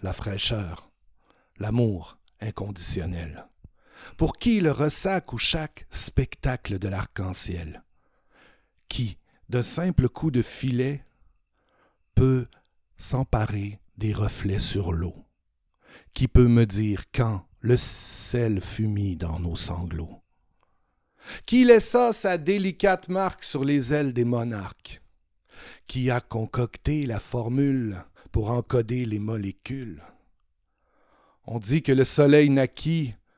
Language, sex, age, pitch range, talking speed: French, male, 60-79, 105-145 Hz, 110 wpm